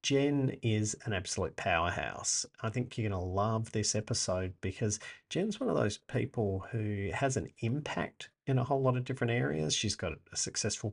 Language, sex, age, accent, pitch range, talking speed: English, male, 40-59, Australian, 100-115 Hz, 180 wpm